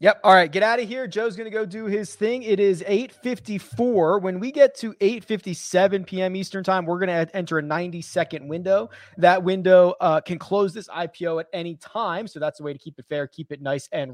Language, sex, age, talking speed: English, male, 30-49, 230 wpm